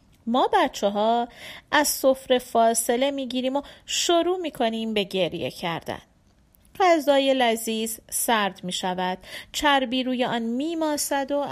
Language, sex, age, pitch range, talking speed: Persian, female, 40-59, 200-275 Hz, 125 wpm